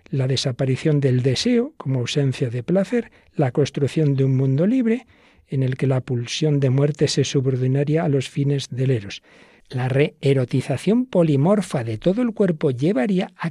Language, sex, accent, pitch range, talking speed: Spanish, male, Spanish, 130-180 Hz, 165 wpm